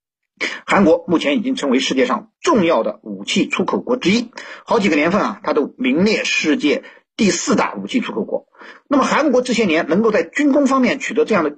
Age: 50-69